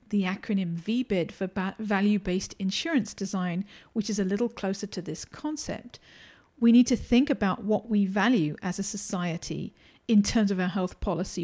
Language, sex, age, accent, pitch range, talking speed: English, female, 40-59, British, 195-235 Hz, 170 wpm